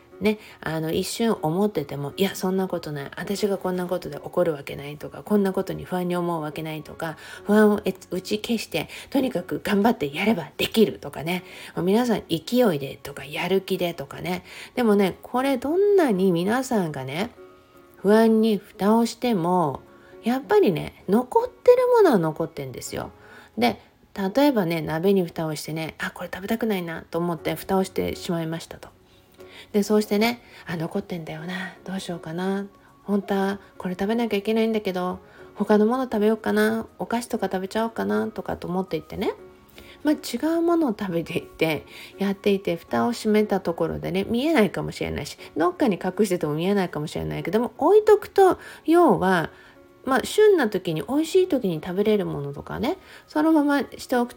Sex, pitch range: female, 165-225 Hz